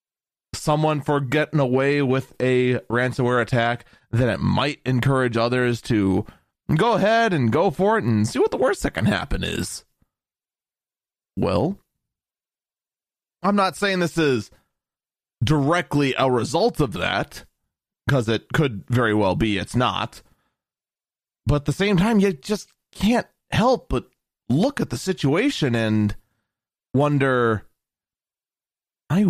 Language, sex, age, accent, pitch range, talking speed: English, male, 30-49, American, 115-155 Hz, 135 wpm